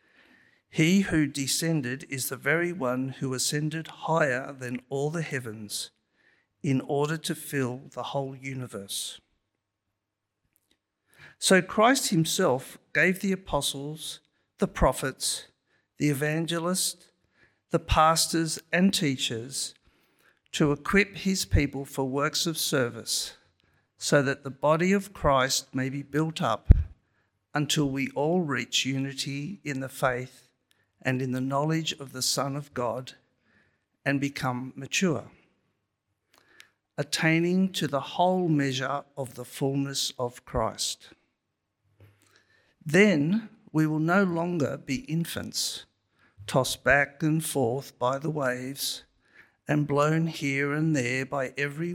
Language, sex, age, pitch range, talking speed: English, male, 50-69, 130-160 Hz, 120 wpm